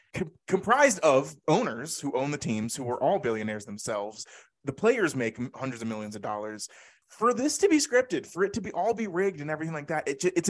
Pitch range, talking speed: 125-180 Hz, 225 wpm